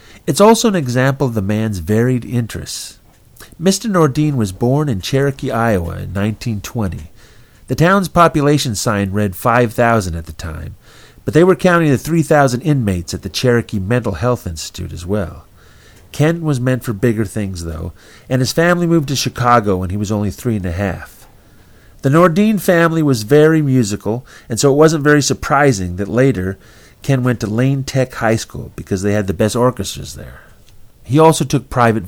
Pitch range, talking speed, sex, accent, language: 100-140 Hz, 180 wpm, male, American, English